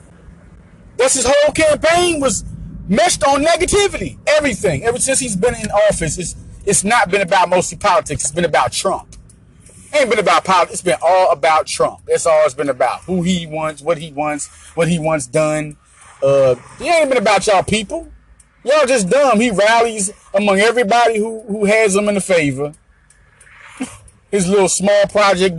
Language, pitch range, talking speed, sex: English, 165-245 Hz, 180 wpm, male